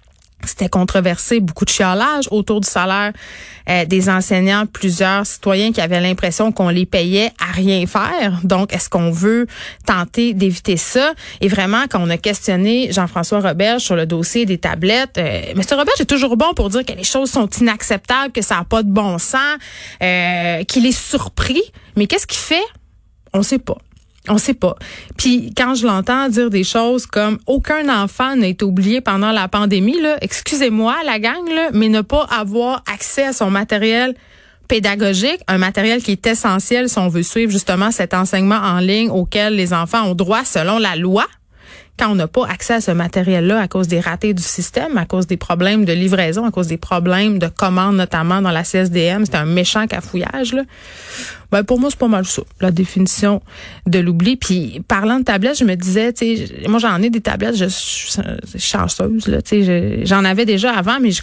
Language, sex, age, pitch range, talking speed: French, female, 30-49, 185-230 Hz, 195 wpm